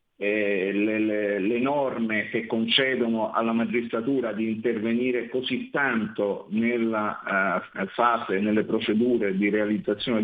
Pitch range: 115-175 Hz